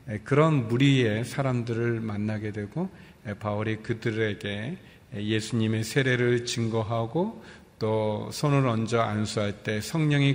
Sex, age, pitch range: male, 40-59, 110-135 Hz